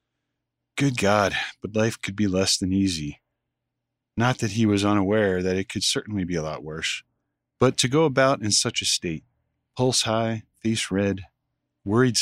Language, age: English, 40-59